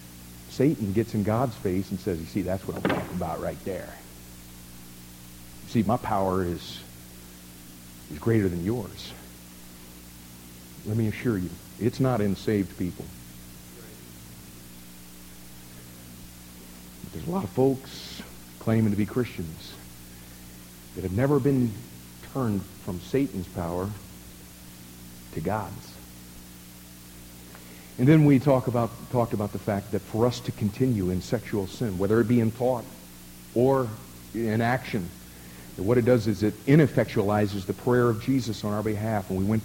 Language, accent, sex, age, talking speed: English, American, male, 50-69, 145 wpm